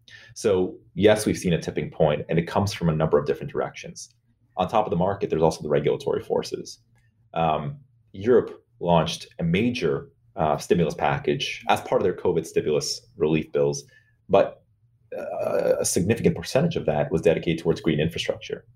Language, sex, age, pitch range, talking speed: English, male, 30-49, 85-120 Hz, 175 wpm